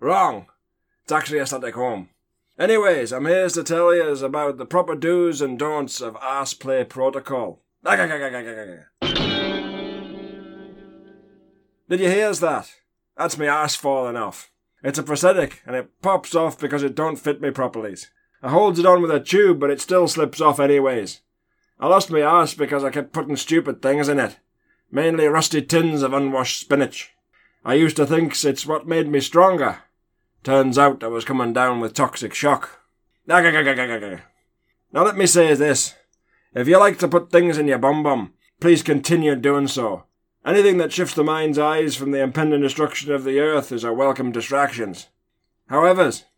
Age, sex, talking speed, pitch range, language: 20-39, male, 170 wpm, 135-165 Hz, English